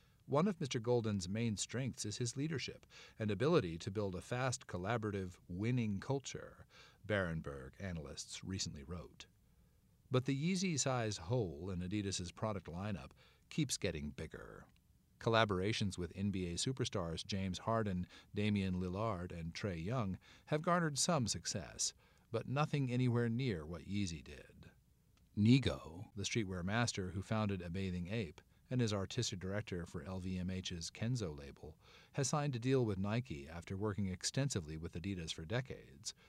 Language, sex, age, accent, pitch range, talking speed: English, male, 50-69, American, 90-120 Hz, 140 wpm